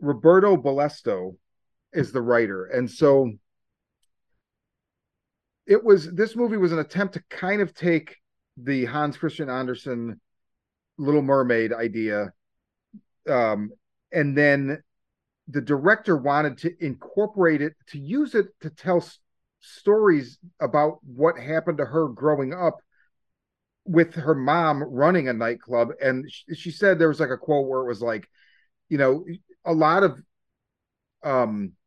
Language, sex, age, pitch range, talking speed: English, male, 40-59, 130-170 Hz, 135 wpm